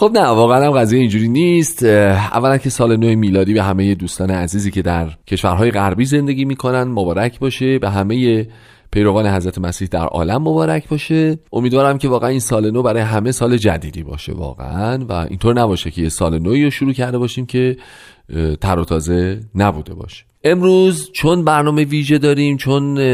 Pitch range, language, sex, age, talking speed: 100-135 Hz, Persian, male, 40-59, 175 wpm